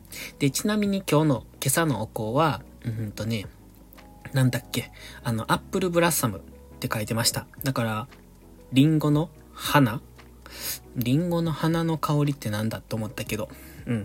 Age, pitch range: 20-39, 110-150 Hz